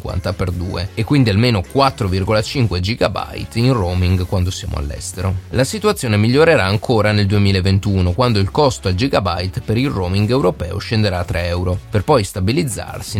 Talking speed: 155 wpm